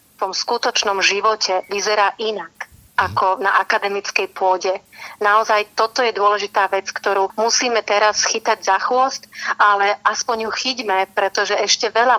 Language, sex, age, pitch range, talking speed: Slovak, female, 40-59, 195-215 Hz, 140 wpm